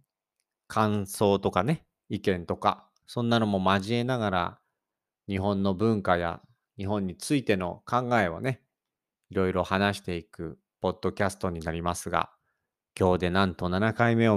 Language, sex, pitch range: Japanese, male, 100-130 Hz